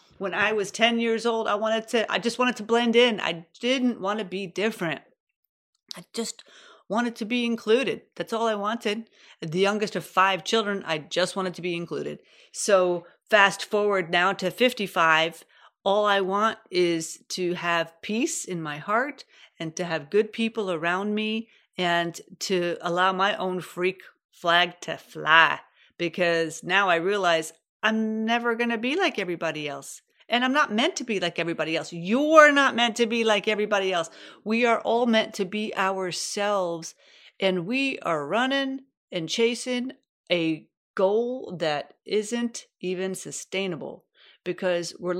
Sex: female